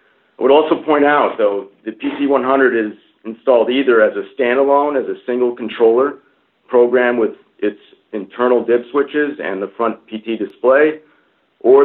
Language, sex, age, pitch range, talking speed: English, male, 50-69, 105-130 Hz, 150 wpm